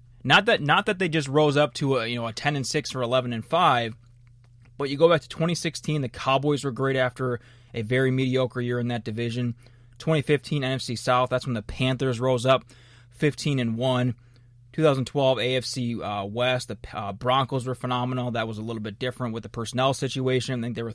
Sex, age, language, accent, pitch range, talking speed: male, 20-39, English, American, 120-140 Hz, 210 wpm